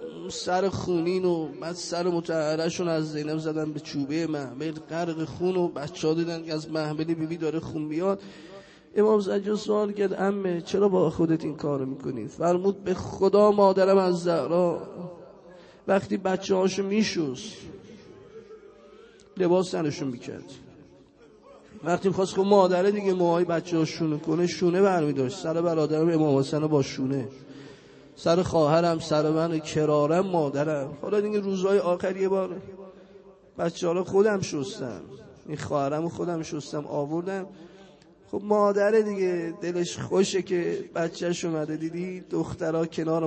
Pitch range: 155-190 Hz